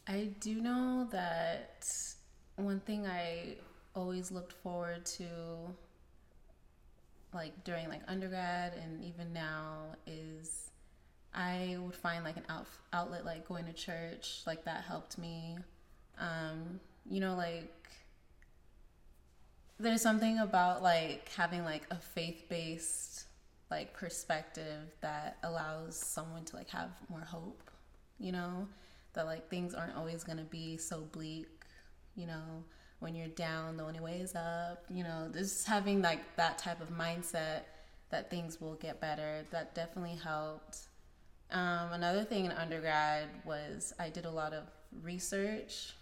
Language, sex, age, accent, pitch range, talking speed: English, female, 20-39, American, 155-195 Hz, 140 wpm